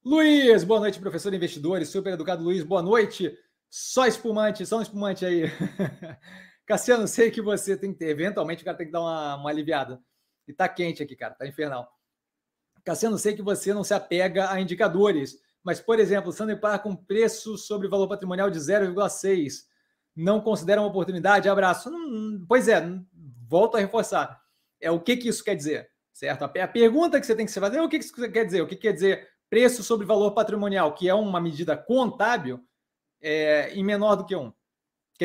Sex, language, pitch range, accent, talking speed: male, Portuguese, 170-215 Hz, Brazilian, 210 wpm